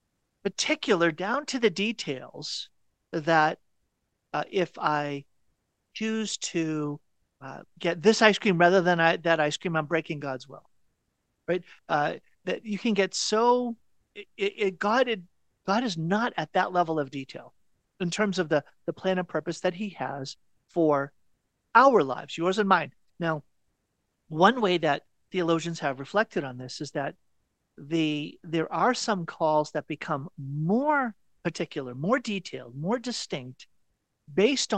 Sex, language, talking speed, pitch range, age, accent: male, English, 150 wpm, 140-195 Hz, 40-59, American